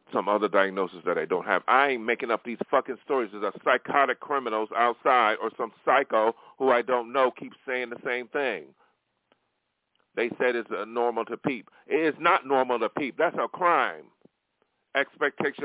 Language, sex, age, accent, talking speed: English, male, 40-59, American, 185 wpm